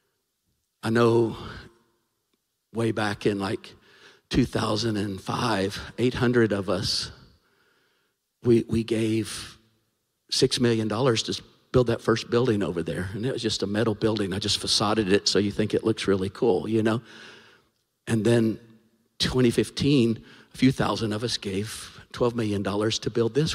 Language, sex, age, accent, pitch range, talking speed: English, male, 50-69, American, 105-120 Hz, 145 wpm